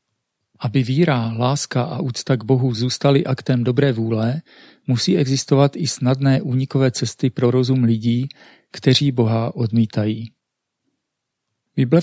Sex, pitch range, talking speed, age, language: male, 115-140 Hz, 120 wpm, 40-59, Czech